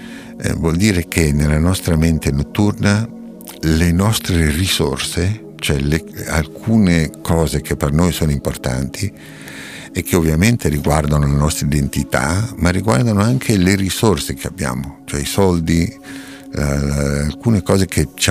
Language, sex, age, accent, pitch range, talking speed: Italian, male, 60-79, native, 75-90 Hz, 135 wpm